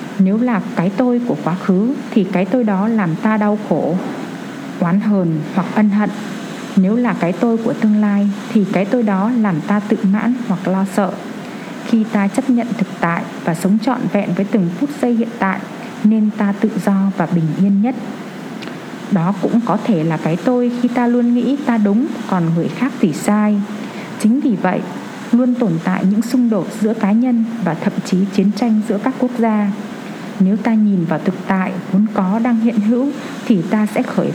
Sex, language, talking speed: female, Vietnamese, 205 wpm